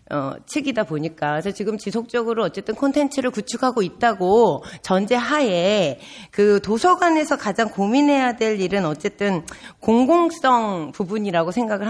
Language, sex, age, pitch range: Korean, female, 40-59, 195-280 Hz